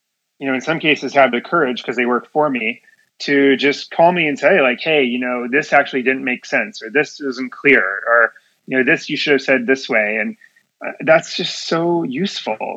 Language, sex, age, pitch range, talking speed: English, male, 30-49, 130-160 Hz, 225 wpm